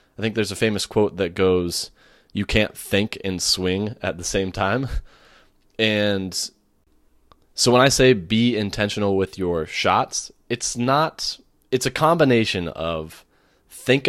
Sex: male